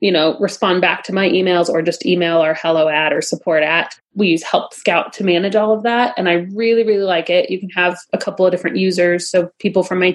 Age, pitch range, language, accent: 30-49, 175-210 Hz, English, American